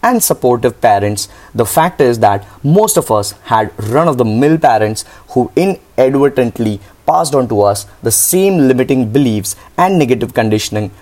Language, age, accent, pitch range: English, 20-39, Indian, 115-145 Hz